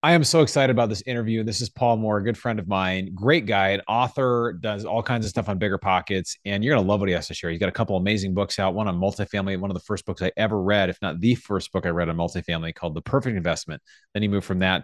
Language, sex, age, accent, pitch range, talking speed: English, male, 30-49, American, 95-115 Hz, 295 wpm